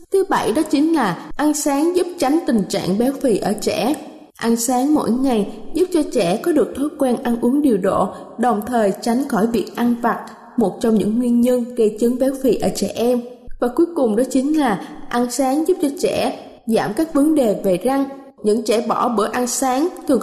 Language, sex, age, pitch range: Thai, female, 10-29, 220-285 Hz